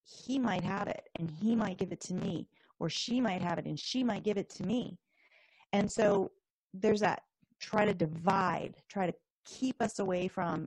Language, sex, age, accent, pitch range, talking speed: English, female, 30-49, American, 180-225 Hz, 200 wpm